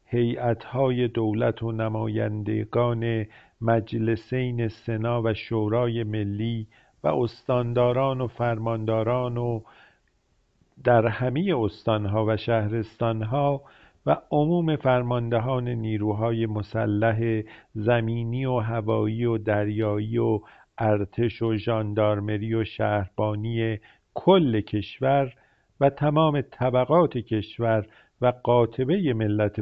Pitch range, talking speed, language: 110-125 Hz, 90 wpm, Persian